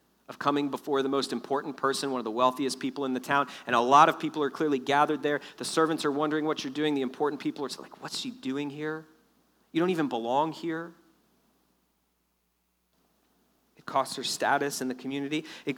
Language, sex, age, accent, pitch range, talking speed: English, male, 40-59, American, 130-160 Hz, 200 wpm